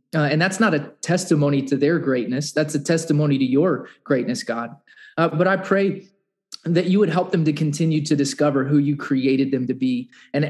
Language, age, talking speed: English, 20-39, 205 wpm